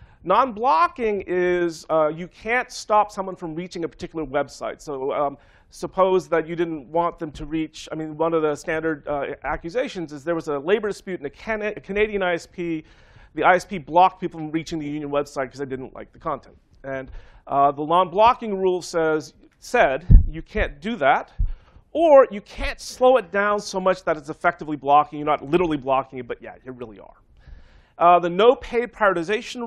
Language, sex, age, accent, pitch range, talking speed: English, male, 40-59, American, 155-200 Hz, 190 wpm